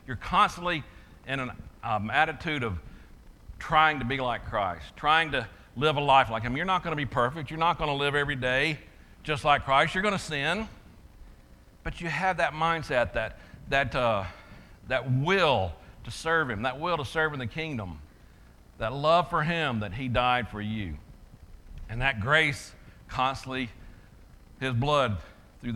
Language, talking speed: English, 170 wpm